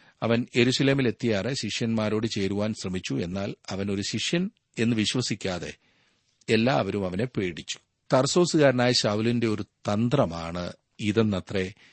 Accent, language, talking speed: native, Malayalam, 95 wpm